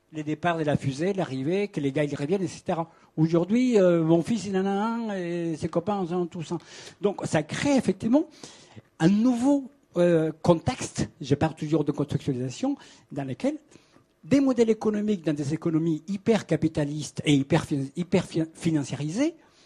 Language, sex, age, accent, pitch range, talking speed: French, male, 60-79, French, 135-185 Hz, 170 wpm